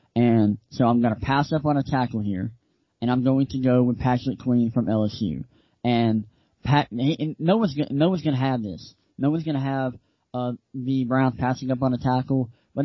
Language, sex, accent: English, male, American